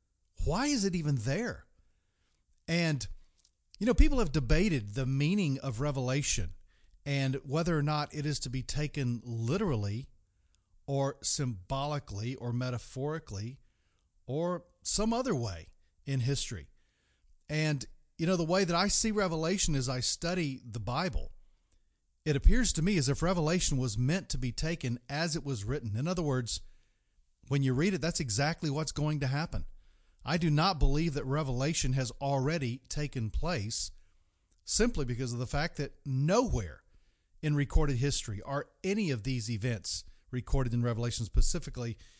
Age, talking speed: 40-59, 150 wpm